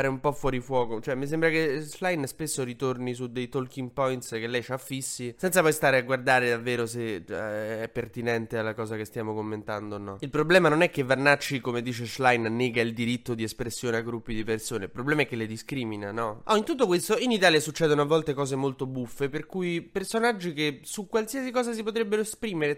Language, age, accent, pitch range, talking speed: Italian, 20-39, native, 120-155 Hz, 220 wpm